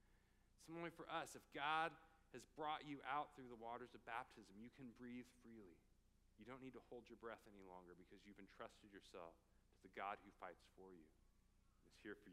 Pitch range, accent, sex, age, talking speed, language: 105-150 Hz, American, male, 40-59, 205 wpm, English